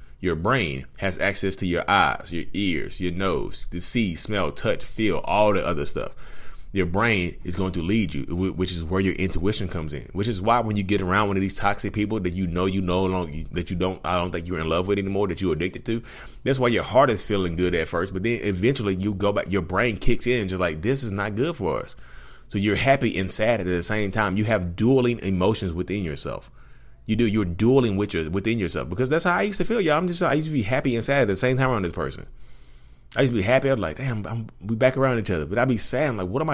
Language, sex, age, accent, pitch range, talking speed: English, male, 30-49, American, 90-125 Hz, 270 wpm